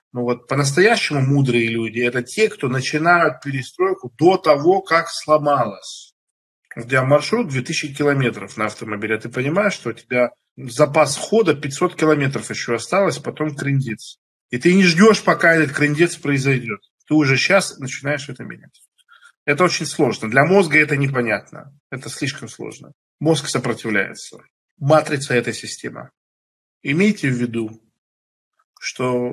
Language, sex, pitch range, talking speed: Russian, male, 125-160 Hz, 135 wpm